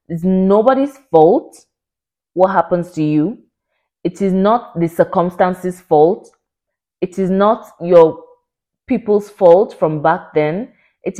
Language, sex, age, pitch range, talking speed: English, female, 20-39, 155-195 Hz, 125 wpm